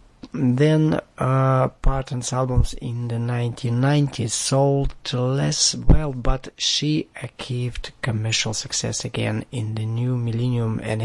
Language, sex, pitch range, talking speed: English, male, 110-130 Hz, 115 wpm